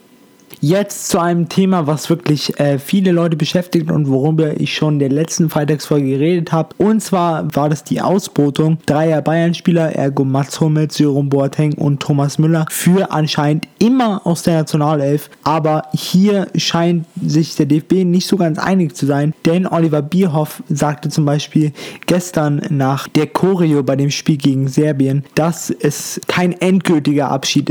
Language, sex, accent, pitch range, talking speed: German, male, German, 145-175 Hz, 160 wpm